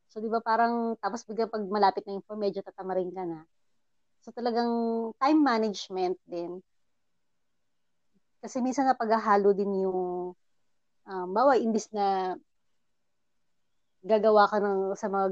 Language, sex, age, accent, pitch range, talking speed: Filipino, female, 20-39, native, 185-215 Hz, 125 wpm